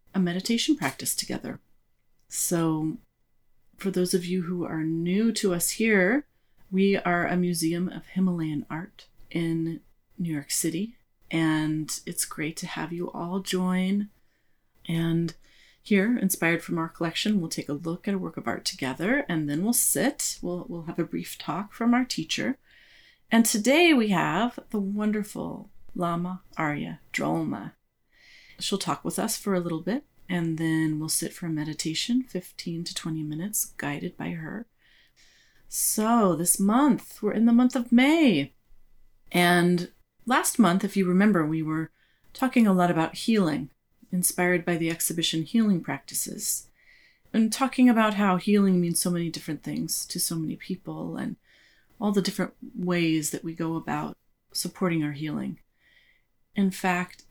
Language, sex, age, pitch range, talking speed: English, female, 30-49, 165-215 Hz, 155 wpm